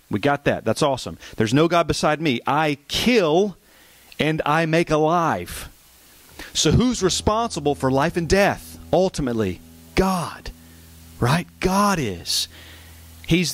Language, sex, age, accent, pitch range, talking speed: English, male, 40-59, American, 115-165 Hz, 130 wpm